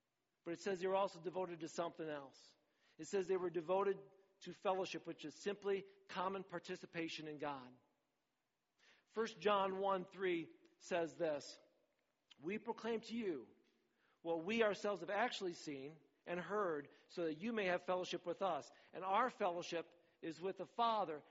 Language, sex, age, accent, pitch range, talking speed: English, male, 50-69, American, 145-195 Hz, 165 wpm